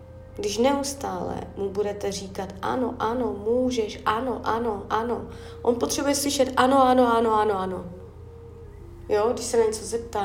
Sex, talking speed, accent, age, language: female, 145 wpm, native, 30-49, Czech